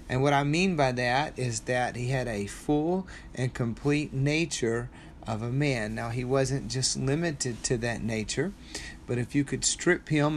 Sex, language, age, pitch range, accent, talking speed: male, English, 40-59, 120-145 Hz, American, 185 wpm